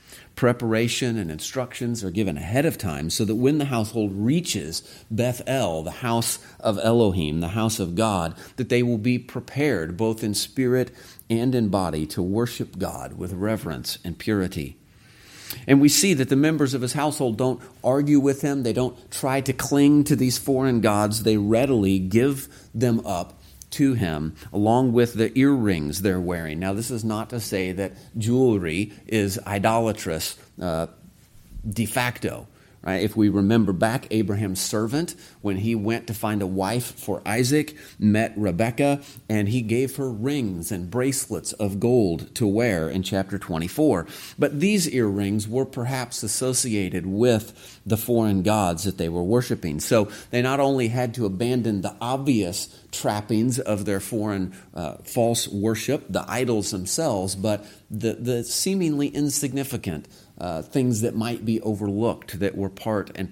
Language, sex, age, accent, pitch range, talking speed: English, male, 40-59, American, 100-125 Hz, 160 wpm